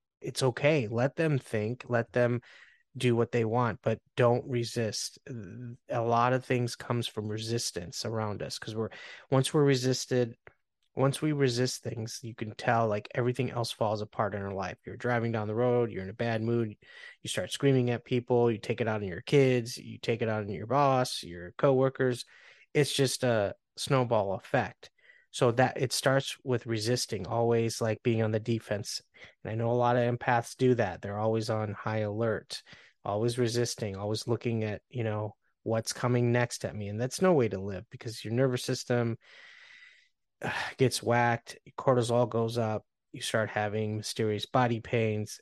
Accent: American